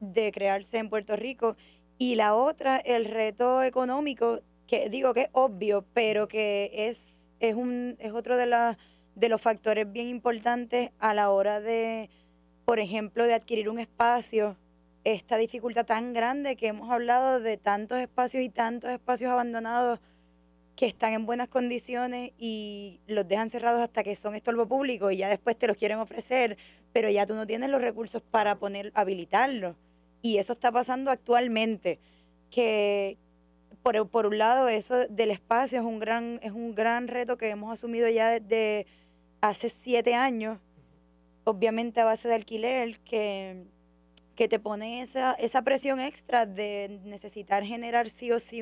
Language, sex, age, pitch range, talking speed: Spanish, female, 10-29, 210-240 Hz, 160 wpm